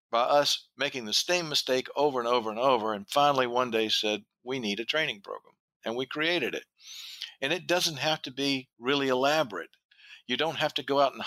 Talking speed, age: 215 wpm, 50-69